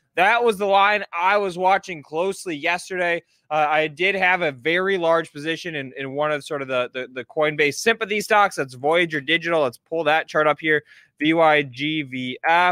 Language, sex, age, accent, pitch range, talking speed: English, male, 20-39, American, 145-180 Hz, 190 wpm